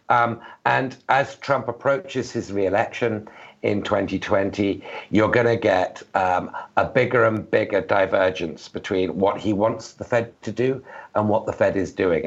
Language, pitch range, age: English, 90-110 Hz, 60-79